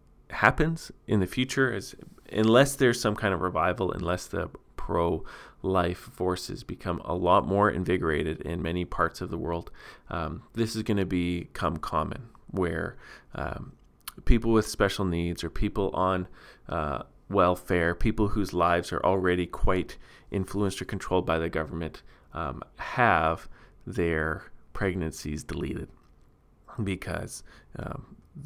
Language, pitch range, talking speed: English, 85-105 Hz, 135 wpm